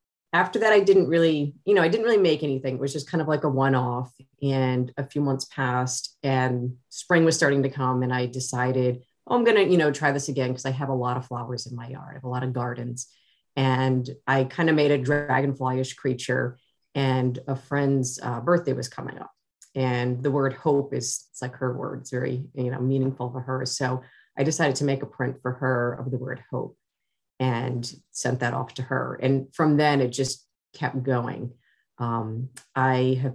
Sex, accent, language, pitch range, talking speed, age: female, American, English, 125-140 Hz, 215 wpm, 30-49